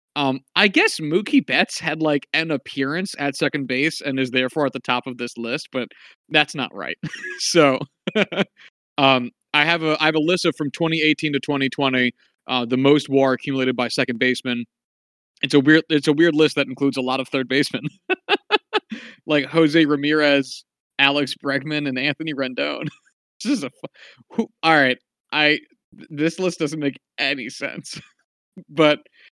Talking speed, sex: 170 wpm, male